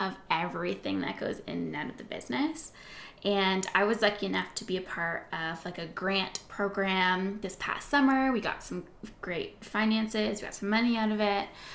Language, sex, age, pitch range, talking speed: English, female, 10-29, 185-220 Hz, 200 wpm